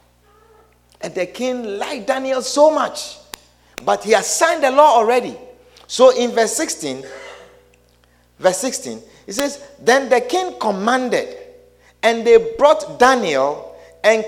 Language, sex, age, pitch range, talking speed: English, male, 50-69, 195-310 Hz, 130 wpm